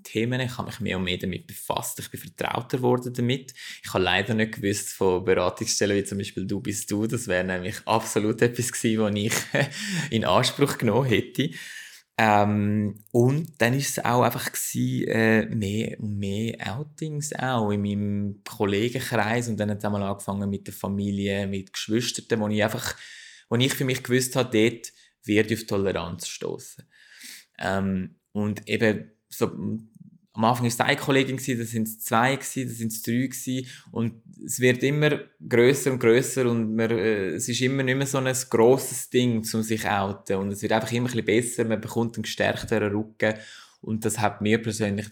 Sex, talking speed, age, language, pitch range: male, 180 wpm, 20-39, German, 100-120 Hz